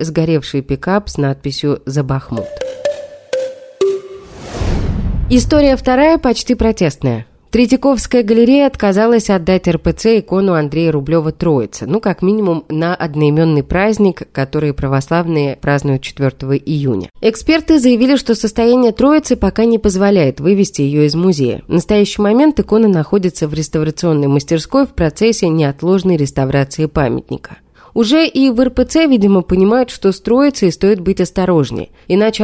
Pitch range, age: 155-235 Hz, 30-49